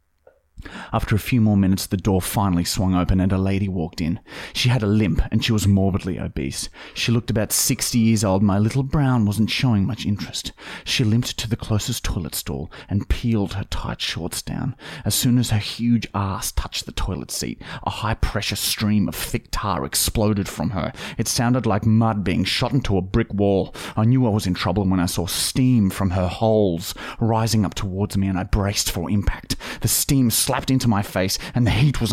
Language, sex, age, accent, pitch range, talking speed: English, male, 30-49, Australian, 100-120 Hz, 205 wpm